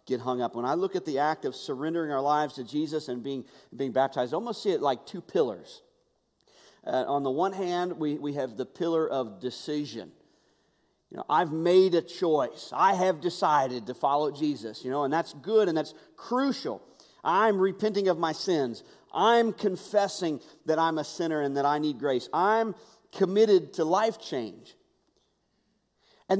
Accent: American